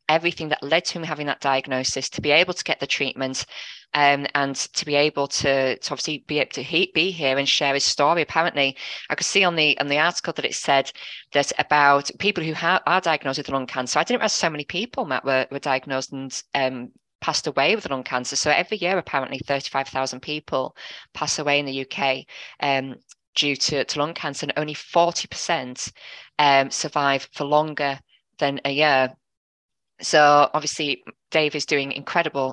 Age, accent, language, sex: 20-39, British, English, female